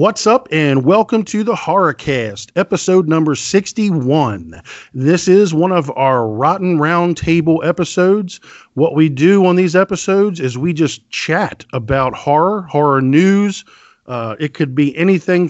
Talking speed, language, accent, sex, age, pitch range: 150 wpm, English, American, male, 50-69, 130-180 Hz